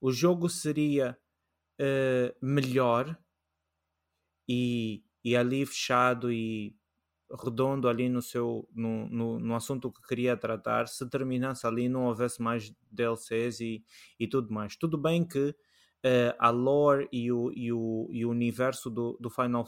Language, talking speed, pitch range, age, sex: Portuguese, 120 wpm, 115-130 Hz, 20-39, male